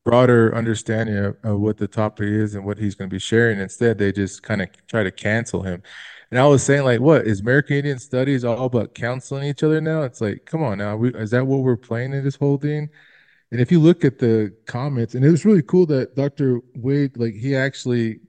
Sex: male